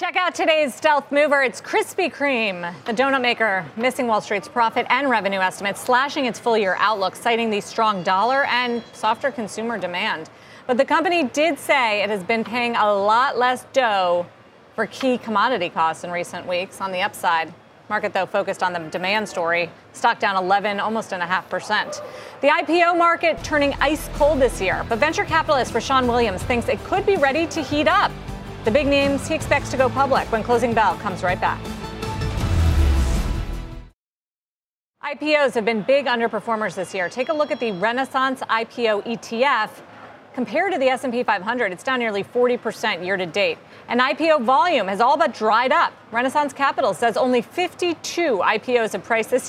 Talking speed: 180 wpm